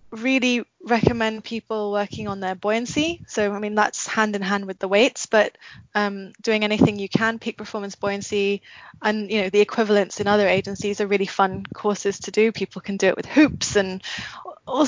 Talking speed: 195 wpm